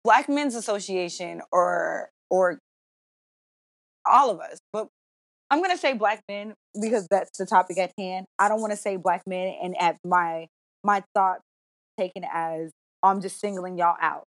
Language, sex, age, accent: English, female, 20-39, American